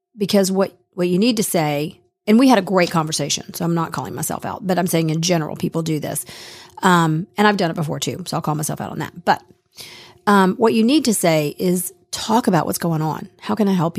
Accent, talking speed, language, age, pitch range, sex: American, 250 wpm, English, 40-59, 170-205 Hz, female